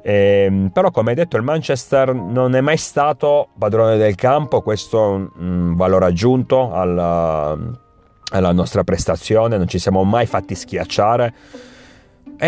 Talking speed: 145 wpm